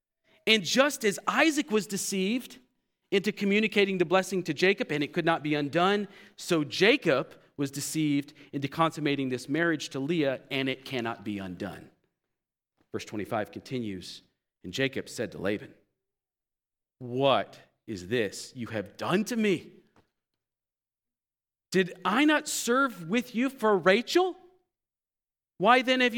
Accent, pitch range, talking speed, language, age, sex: American, 135-195 Hz, 140 wpm, English, 40-59, male